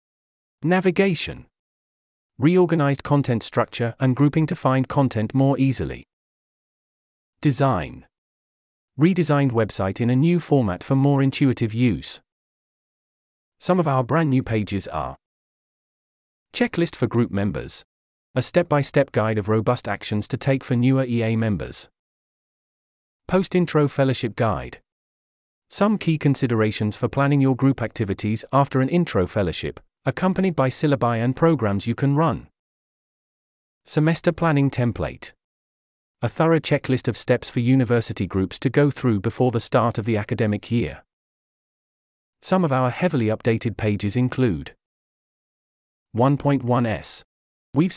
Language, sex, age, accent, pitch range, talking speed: English, male, 40-59, British, 110-140 Hz, 125 wpm